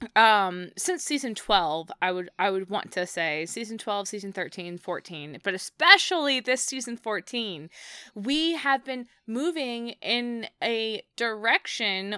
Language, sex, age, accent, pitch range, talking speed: English, female, 20-39, American, 185-240 Hz, 140 wpm